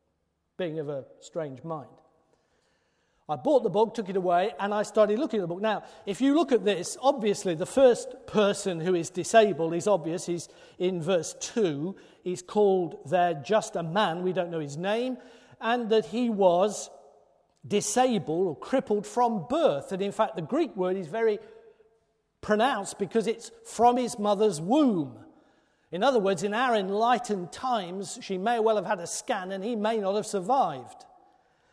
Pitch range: 180-230 Hz